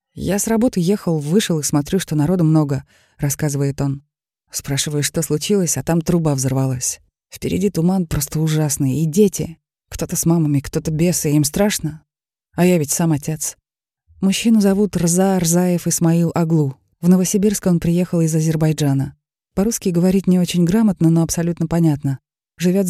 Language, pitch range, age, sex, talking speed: Russian, 150-180 Hz, 20-39, female, 155 wpm